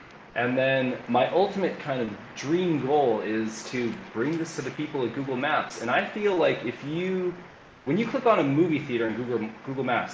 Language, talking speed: English, 205 wpm